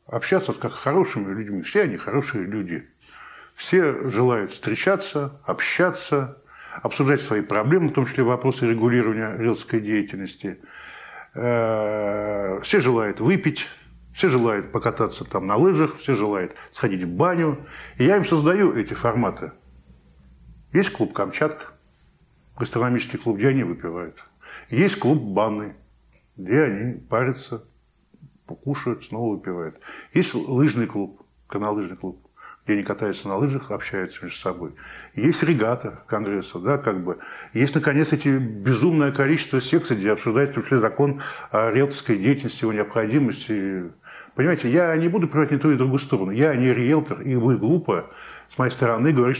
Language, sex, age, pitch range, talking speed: Russian, male, 10-29, 110-150 Hz, 135 wpm